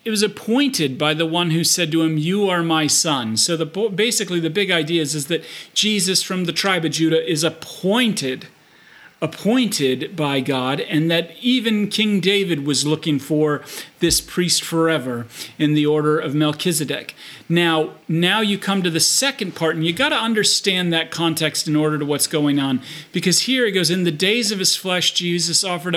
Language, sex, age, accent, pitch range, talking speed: English, male, 40-59, American, 155-185 Hz, 190 wpm